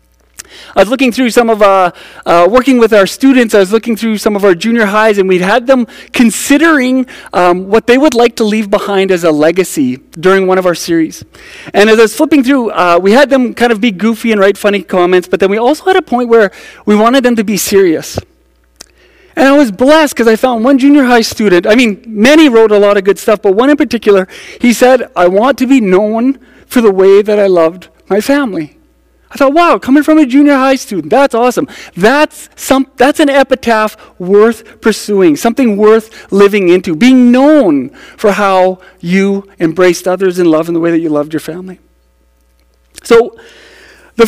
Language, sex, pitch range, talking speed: English, male, 190-260 Hz, 210 wpm